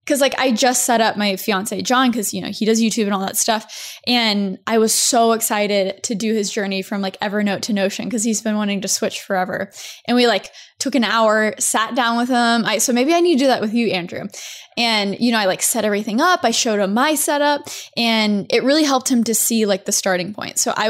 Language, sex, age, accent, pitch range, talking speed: English, female, 10-29, American, 210-255 Hz, 245 wpm